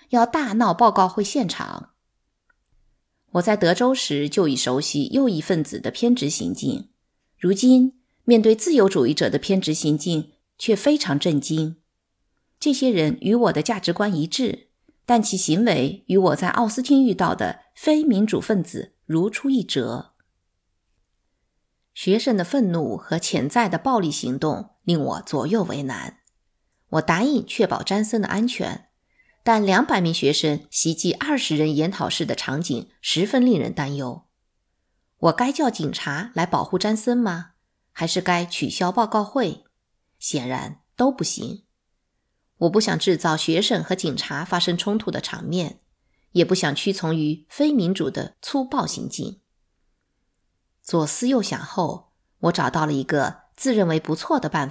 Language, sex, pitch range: Chinese, female, 155-235 Hz